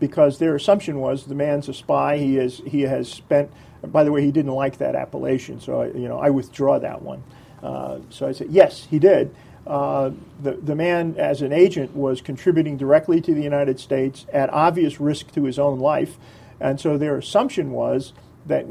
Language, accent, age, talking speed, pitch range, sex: English, American, 40-59, 200 wpm, 140-175 Hz, male